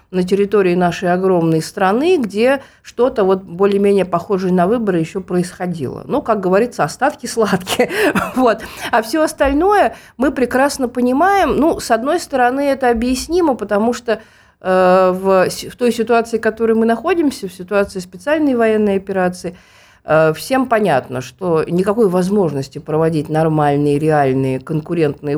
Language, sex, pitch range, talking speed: Russian, female, 170-230 Hz, 135 wpm